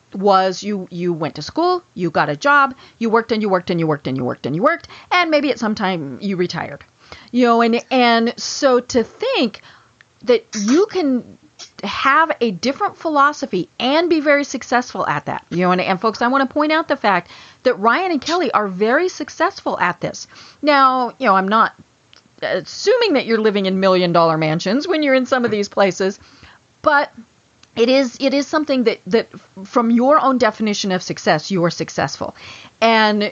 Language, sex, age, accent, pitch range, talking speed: English, female, 40-59, American, 185-270 Hz, 200 wpm